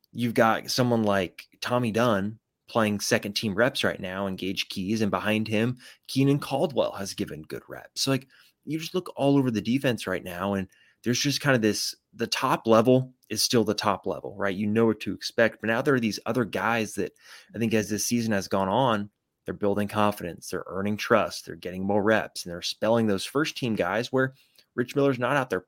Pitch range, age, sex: 100-125 Hz, 20-39, male